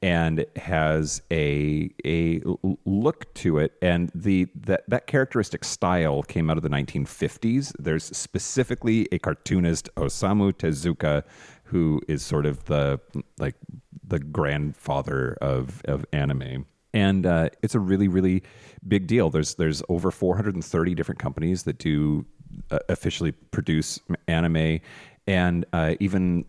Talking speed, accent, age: 130 wpm, American, 30-49